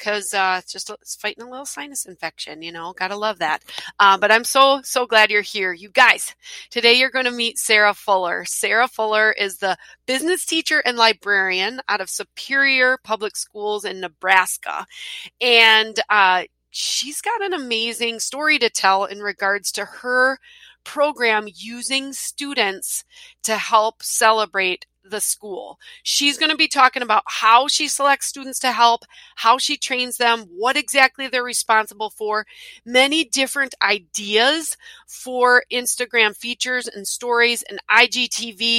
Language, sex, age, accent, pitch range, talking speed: English, female, 30-49, American, 210-275 Hz, 150 wpm